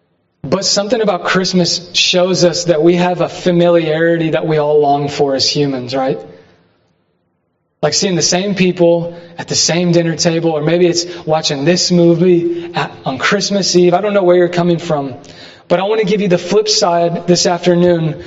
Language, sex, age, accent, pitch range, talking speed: English, male, 20-39, American, 145-180 Hz, 185 wpm